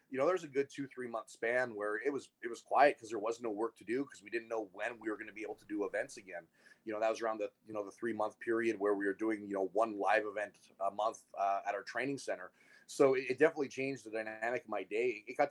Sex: male